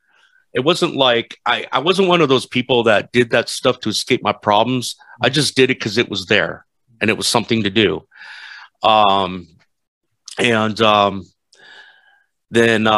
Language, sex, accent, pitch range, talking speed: English, male, American, 100-130 Hz, 165 wpm